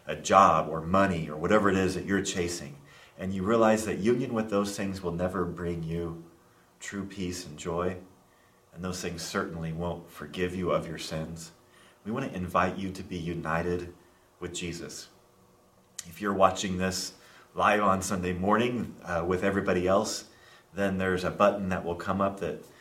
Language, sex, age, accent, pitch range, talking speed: English, male, 30-49, American, 85-100 Hz, 180 wpm